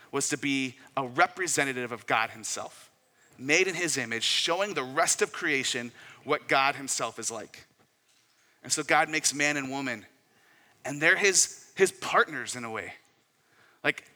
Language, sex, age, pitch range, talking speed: English, male, 30-49, 130-185 Hz, 160 wpm